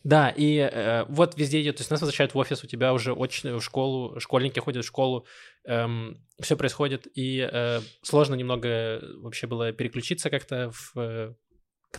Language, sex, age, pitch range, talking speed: Russian, male, 20-39, 120-155 Hz, 170 wpm